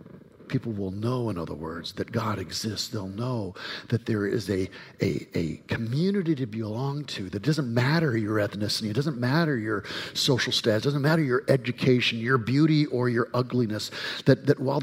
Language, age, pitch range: English, 50-69, 100-145 Hz